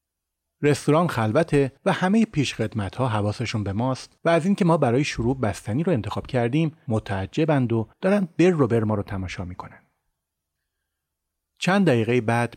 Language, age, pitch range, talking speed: Persian, 30-49, 100-145 Hz, 150 wpm